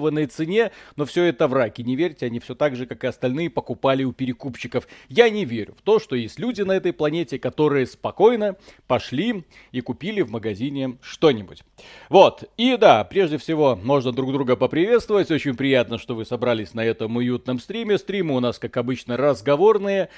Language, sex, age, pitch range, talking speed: Russian, male, 40-59, 125-155 Hz, 180 wpm